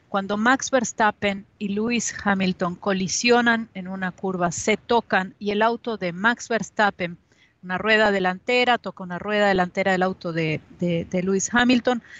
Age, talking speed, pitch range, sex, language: 40-59, 150 wpm, 185-225 Hz, female, Spanish